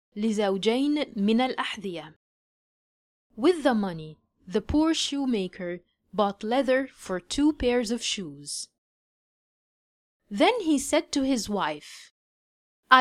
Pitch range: 200-285 Hz